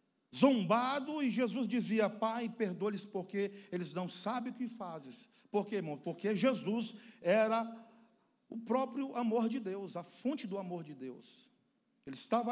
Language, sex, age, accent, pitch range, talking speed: Portuguese, male, 50-69, Brazilian, 195-240 Hz, 160 wpm